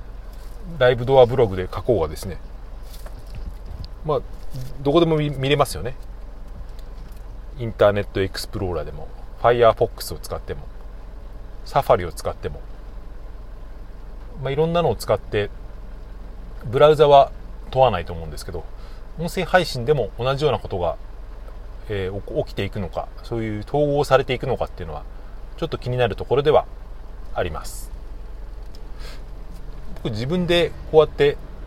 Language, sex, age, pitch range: Japanese, male, 40-59, 95-145 Hz